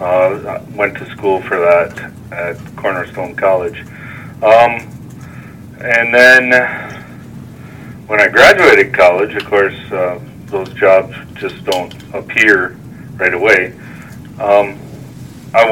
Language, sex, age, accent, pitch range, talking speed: English, male, 40-59, American, 95-120 Hz, 105 wpm